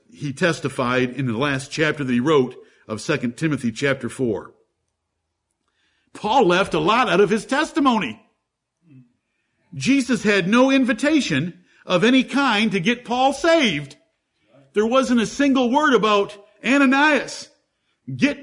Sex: male